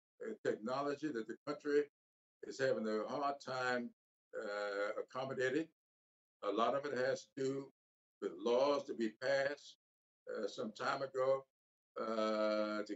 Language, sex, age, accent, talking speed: English, male, 60-79, American, 135 wpm